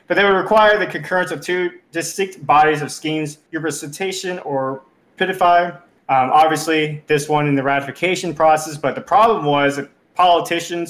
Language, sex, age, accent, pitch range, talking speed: English, male, 20-39, American, 140-160 Hz, 160 wpm